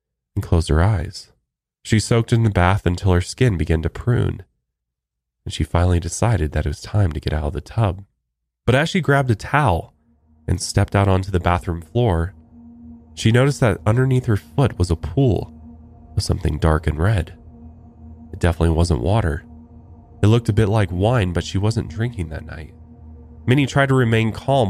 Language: English